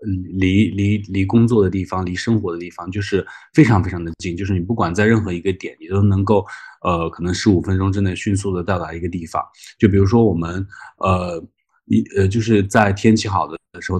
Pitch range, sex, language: 90-110 Hz, male, Chinese